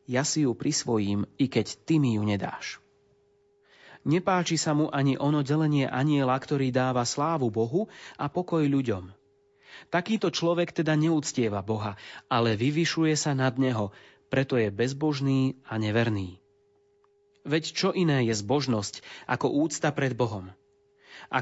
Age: 30-49